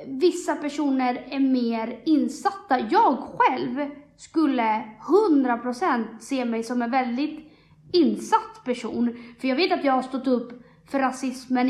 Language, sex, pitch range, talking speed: Swedish, female, 250-315 Hz, 135 wpm